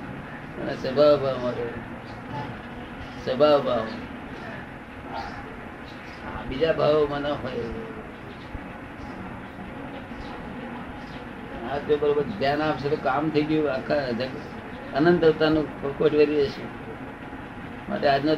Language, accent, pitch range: Gujarati, native, 135-155 Hz